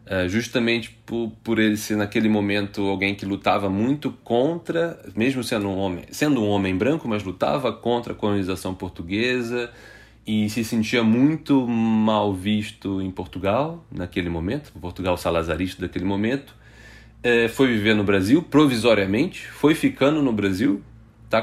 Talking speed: 135 wpm